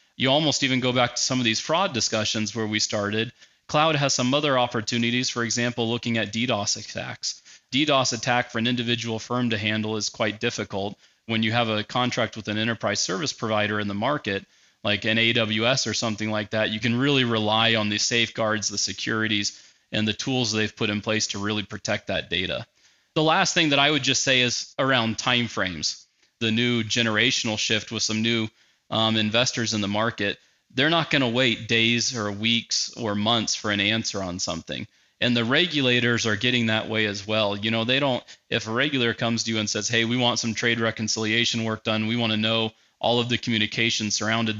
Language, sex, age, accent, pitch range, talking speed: English, male, 30-49, American, 110-120 Hz, 205 wpm